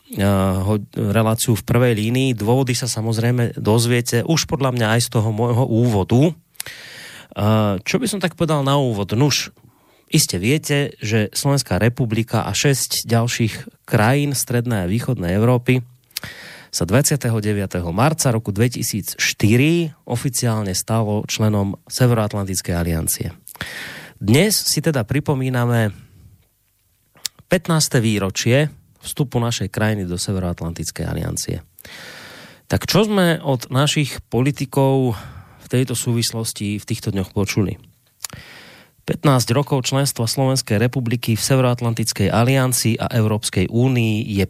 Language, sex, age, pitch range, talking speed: Slovak, male, 30-49, 105-130 Hz, 115 wpm